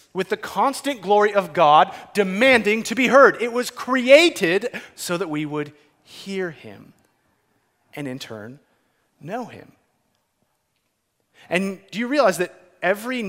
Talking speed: 135 wpm